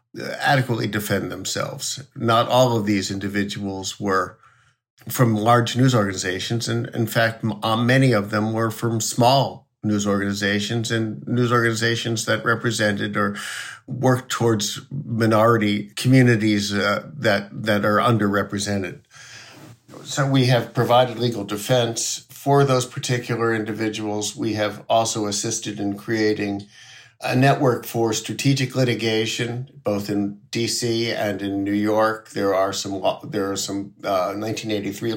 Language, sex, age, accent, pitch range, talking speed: English, male, 50-69, American, 105-125 Hz, 130 wpm